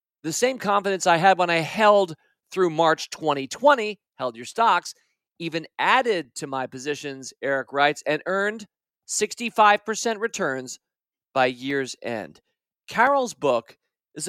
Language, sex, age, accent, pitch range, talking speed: English, male, 40-59, American, 150-210 Hz, 130 wpm